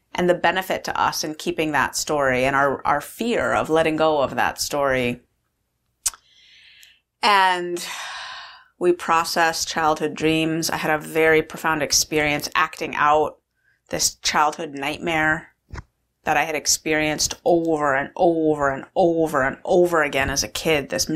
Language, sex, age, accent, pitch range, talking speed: English, female, 30-49, American, 140-160 Hz, 145 wpm